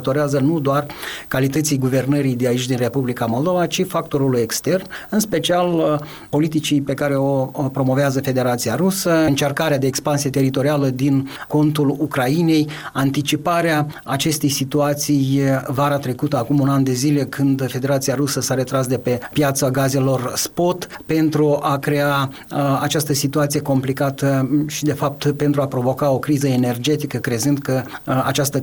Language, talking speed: Romanian, 140 wpm